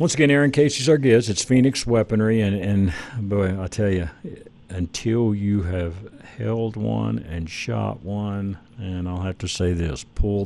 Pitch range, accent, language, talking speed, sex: 90-105 Hz, American, English, 170 wpm, male